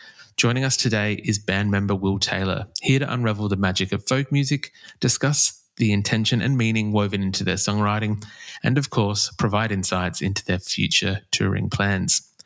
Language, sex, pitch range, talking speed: English, male, 100-130 Hz, 170 wpm